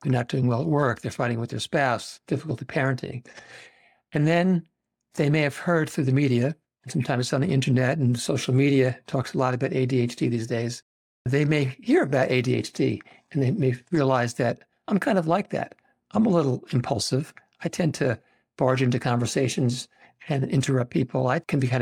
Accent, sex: American, male